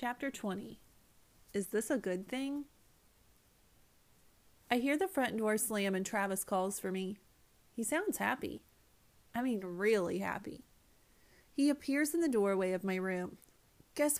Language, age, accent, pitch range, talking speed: English, 30-49, American, 195-270 Hz, 145 wpm